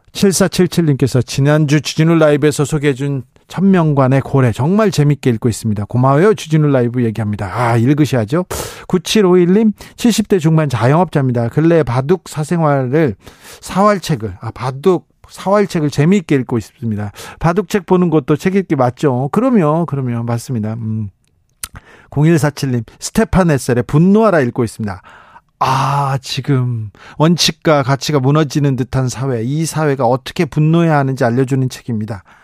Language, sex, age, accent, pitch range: Korean, male, 40-59, native, 125-175 Hz